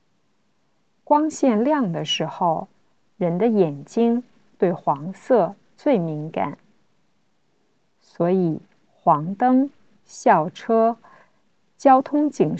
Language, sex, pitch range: Chinese, female, 175-250 Hz